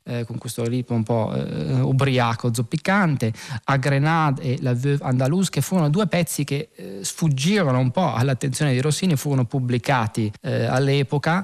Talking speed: 165 wpm